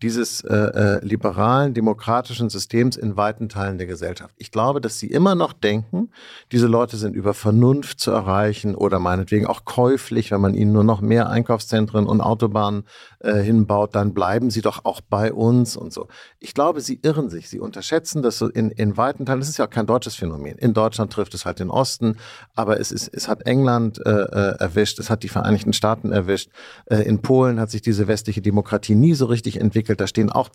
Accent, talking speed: German, 200 wpm